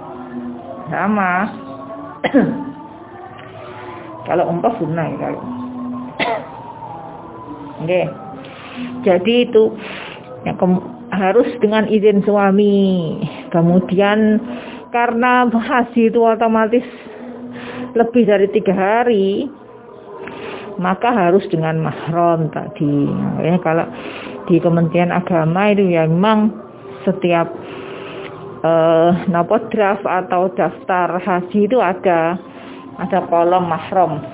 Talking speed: 80 wpm